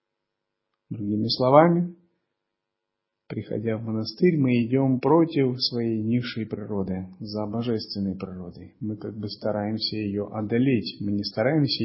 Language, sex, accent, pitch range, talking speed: Russian, male, native, 105-135 Hz, 115 wpm